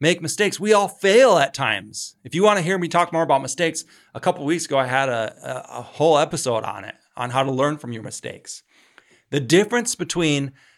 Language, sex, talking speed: English, male, 230 wpm